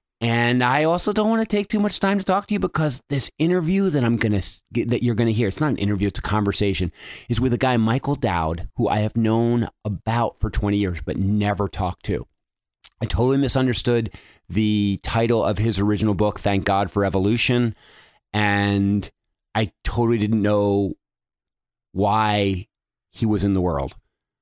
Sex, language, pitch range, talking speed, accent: male, English, 95-115 Hz, 175 wpm, American